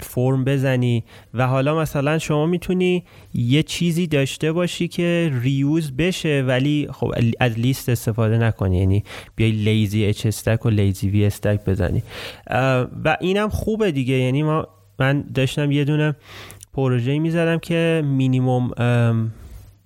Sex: male